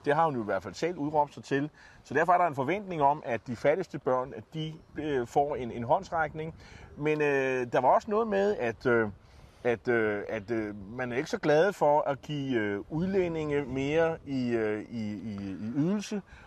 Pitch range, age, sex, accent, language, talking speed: 130-180 Hz, 30-49, male, native, Danish, 205 wpm